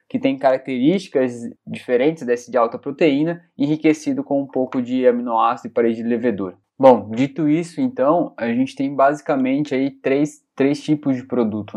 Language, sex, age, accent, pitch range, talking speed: Portuguese, male, 20-39, Brazilian, 125-170 Hz, 165 wpm